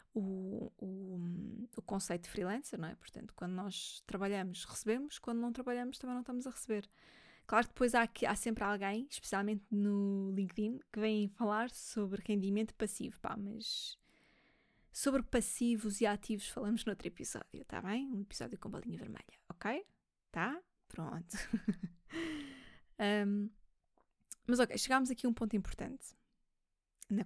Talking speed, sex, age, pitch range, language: 145 wpm, female, 20-39, 195-230 Hz, Portuguese